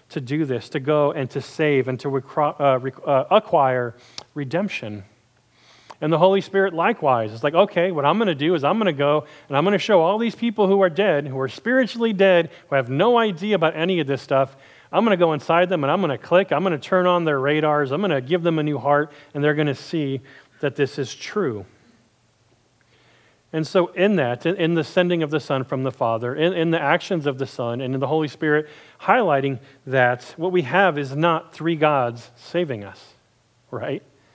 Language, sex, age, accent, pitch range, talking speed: English, male, 40-59, American, 135-175 Hz, 225 wpm